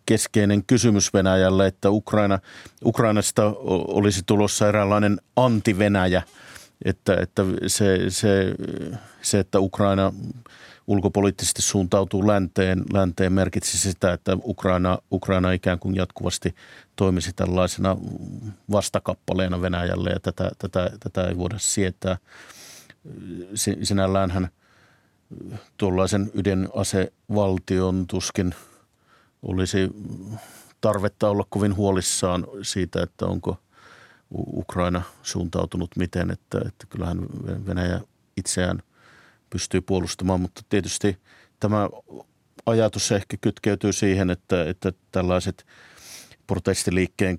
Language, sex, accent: Finnish, male, native